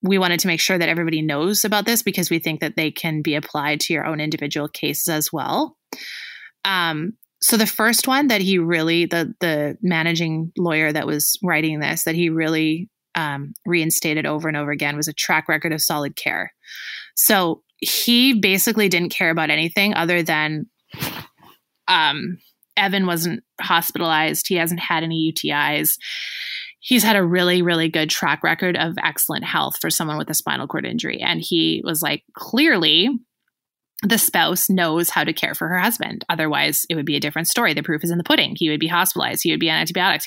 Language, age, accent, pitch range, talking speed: English, 20-39, American, 155-200 Hz, 190 wpm